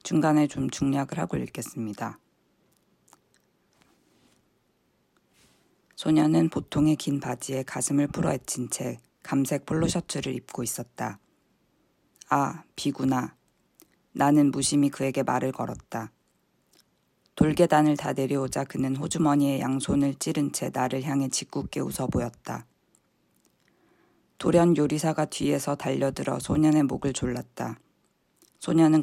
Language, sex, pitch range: Korean, female, 130-155 Hz